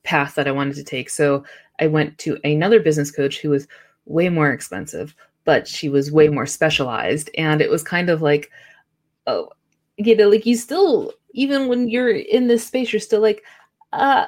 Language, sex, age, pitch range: English, female, 20-39, 150-210 Hz